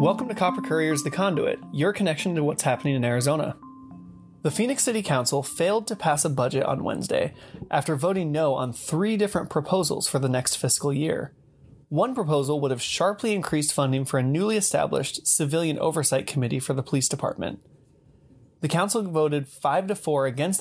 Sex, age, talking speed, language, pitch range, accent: male, 20-39, 180 wpm, English, 135-155 Hz, American